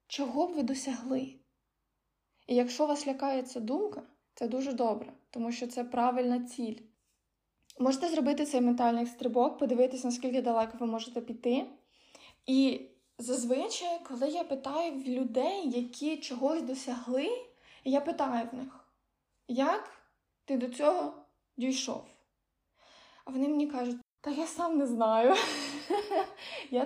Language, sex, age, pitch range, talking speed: Ukrainian, female, 20-39, 245-295 Hz, 130 wpm